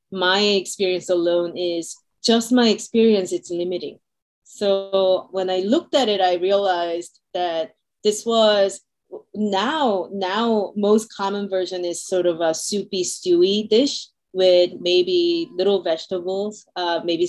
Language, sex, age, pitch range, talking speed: English, female, 30-49, 170-205 Hz, 130 wpm